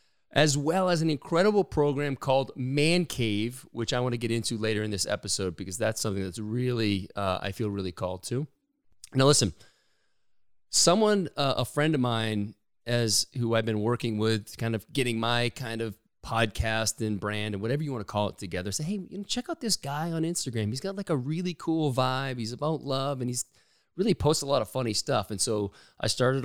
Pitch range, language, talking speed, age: 105-140 Hz, English, 215 wpm, 30-49